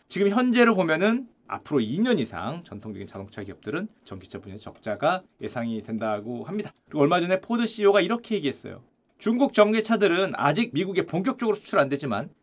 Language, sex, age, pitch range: Korean, male, 30-49, 185-255 Hz